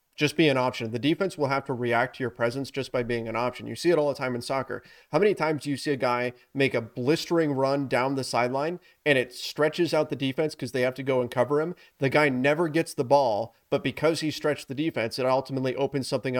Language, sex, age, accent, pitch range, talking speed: English, male, 30-49, American, 125-150 Hz, 260 wpm